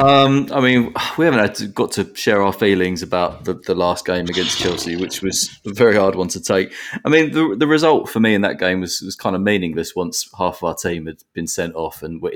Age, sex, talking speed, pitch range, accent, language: 20-39, male, 255 wpm, 85-110 Hz, British, English